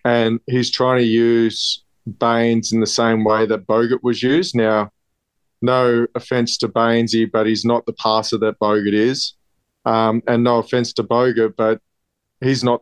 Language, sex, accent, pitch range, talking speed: English, male, Australian, 115-125 Hz, 170 wpm